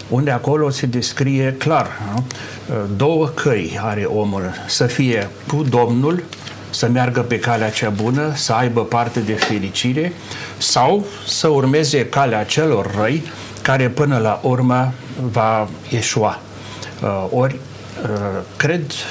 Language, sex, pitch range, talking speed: Romanian, male, 105-135 Hz, 120 wpm